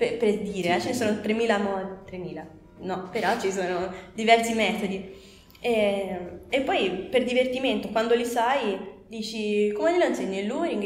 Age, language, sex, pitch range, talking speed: 20-39, Italian, female, 195-230 Hz, 170 wpm